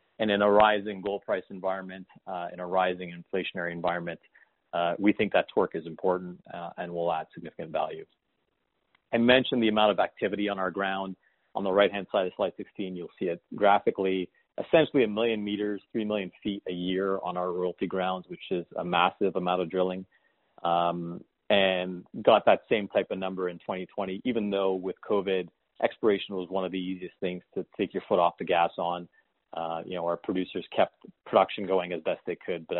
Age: 30-49